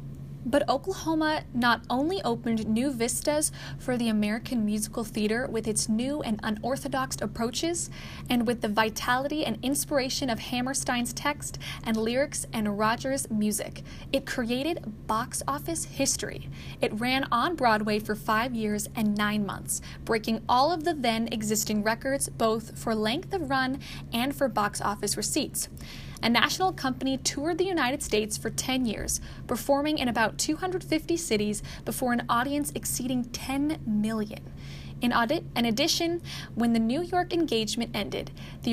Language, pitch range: English, 220-275 Hz